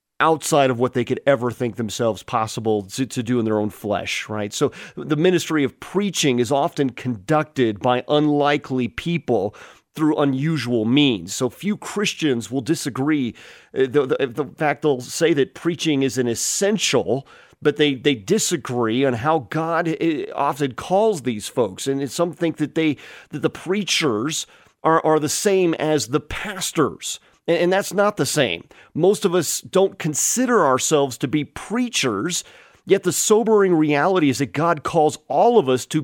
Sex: male